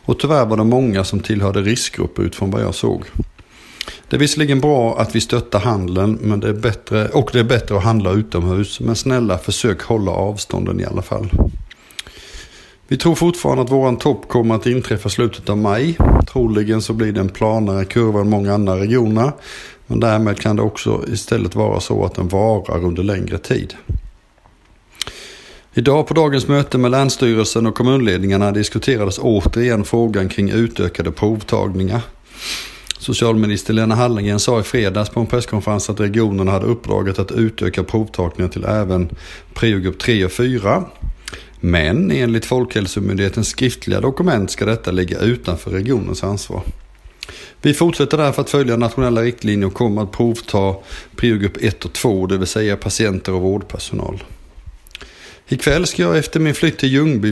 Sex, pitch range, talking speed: male, 100-120 Hz, 160 wpm